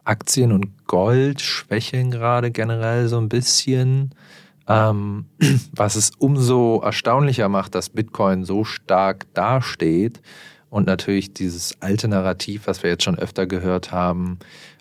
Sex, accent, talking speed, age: male, German, 125 wpm, 40-59